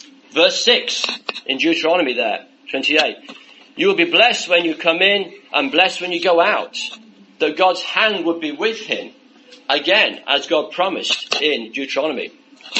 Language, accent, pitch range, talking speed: English, British, 170-280 Hz, 160 wpm